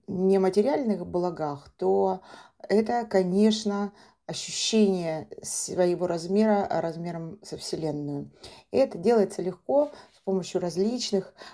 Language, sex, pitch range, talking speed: Russian, female, 175-210 Hz, 90 wpm